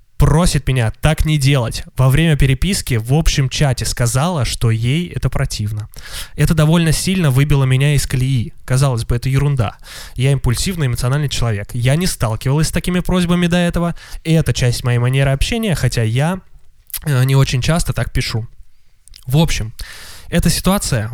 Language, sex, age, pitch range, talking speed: Russian, male, 20-39, 120-155 Hz, 160 wpm